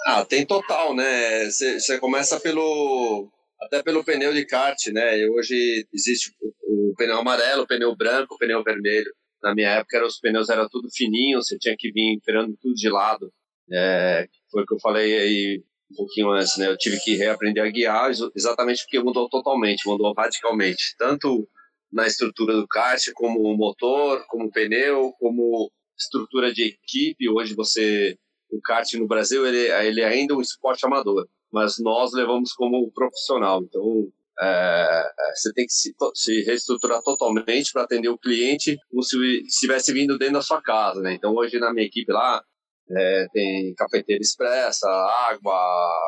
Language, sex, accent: Portuguese, male, Brazilian